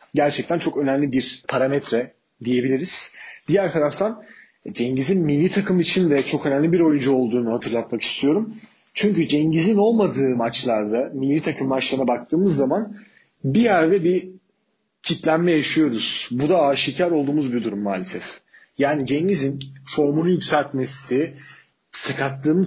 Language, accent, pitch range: Turkish, native, 130-165 Hz